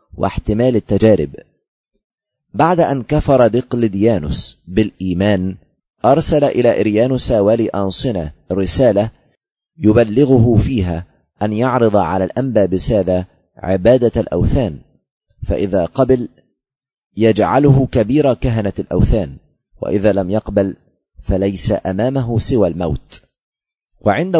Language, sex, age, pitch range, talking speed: Arabic, male, 30-49, 100-125 Hz, 90 wpm